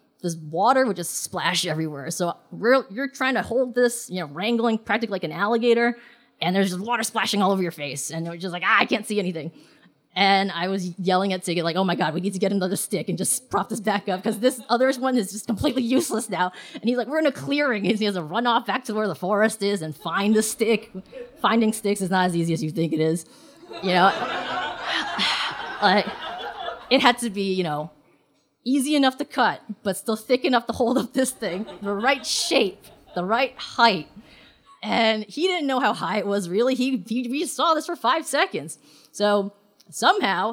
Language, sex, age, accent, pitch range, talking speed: English, female, 20-39, American, 180-245 Hz, 225 wpm